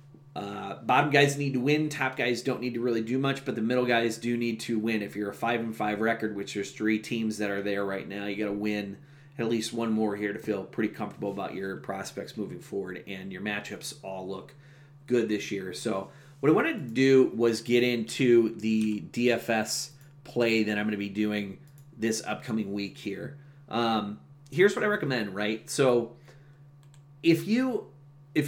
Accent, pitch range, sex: American, 110-140 Hz, male